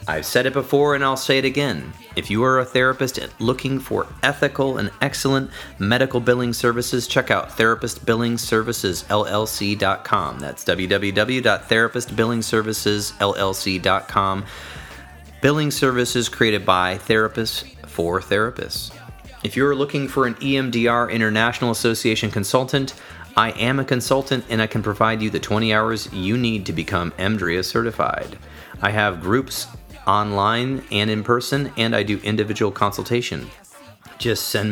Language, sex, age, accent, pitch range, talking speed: English, male, 30-49, American, 105-130 Hz, 130 wpm